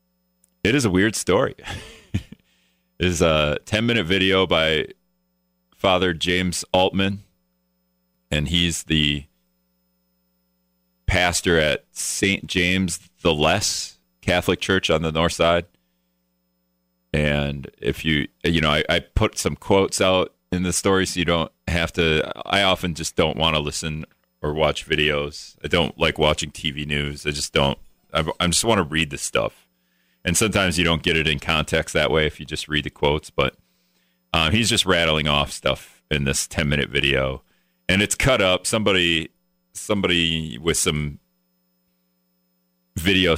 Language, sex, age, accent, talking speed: English, male, 30-49, American, 155 wpm